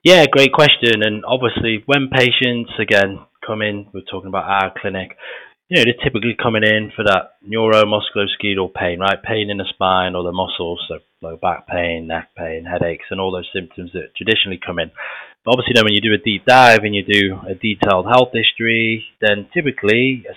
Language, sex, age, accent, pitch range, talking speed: English, male, 20-39, British, 95-115 Hz, 205 wpm